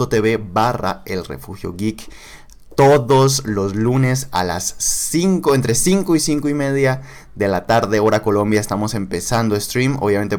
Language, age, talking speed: Spanish, 20-39, 145 wpm